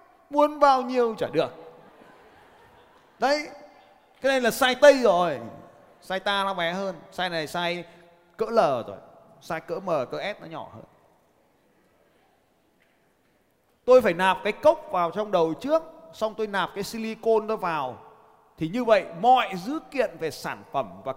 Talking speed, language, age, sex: 160 wpm, Vietnamese, 20-39, male